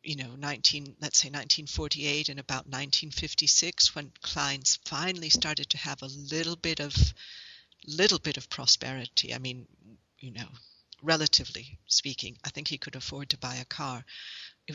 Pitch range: 140-165 Hz